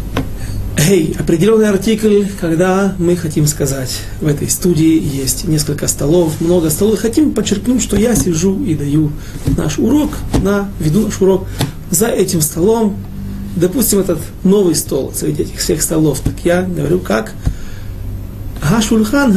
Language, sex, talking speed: Russian, male, 135 wpm